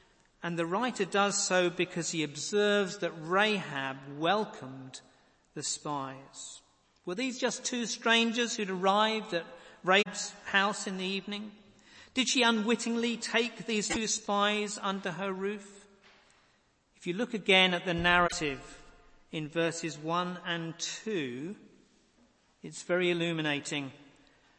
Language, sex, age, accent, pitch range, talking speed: English, male, 50-69, British, 170-205 Hz, 125 wpm